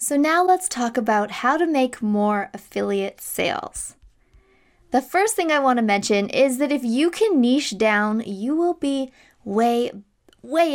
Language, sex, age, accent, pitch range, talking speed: English, female, 20-39, American, 215-275 Hz, 165 wpm